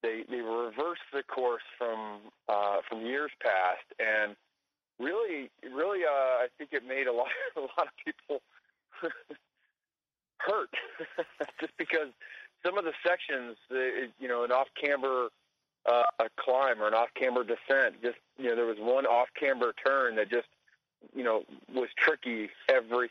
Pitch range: 115-140 Hz